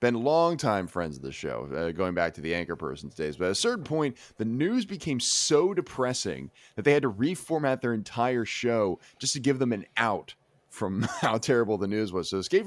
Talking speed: 220 wpm